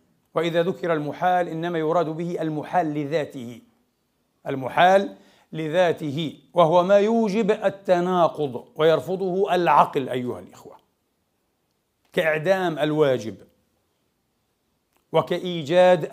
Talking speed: 80 wpm